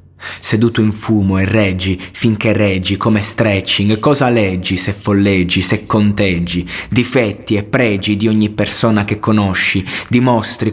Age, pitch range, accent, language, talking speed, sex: 30-49, 95-110 Hz, native, Italian, 135 wpm, male